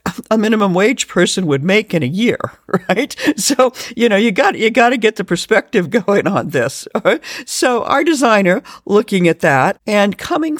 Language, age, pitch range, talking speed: English, 50-69, 160-235 Hz, 180 wpm